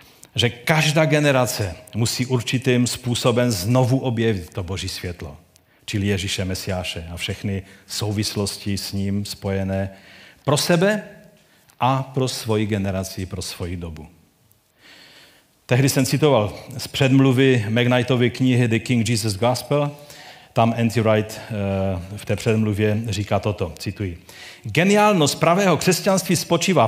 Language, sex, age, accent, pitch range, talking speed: Czech, male, 40-59, native, 115-160 Hz, 120 wpm